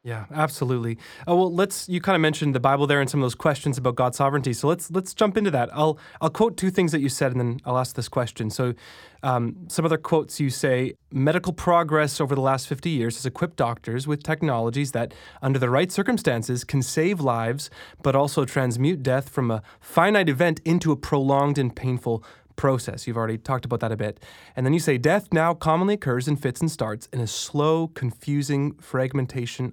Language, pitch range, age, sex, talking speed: English, 125-160 Hz, 20-39, male, 210 wpm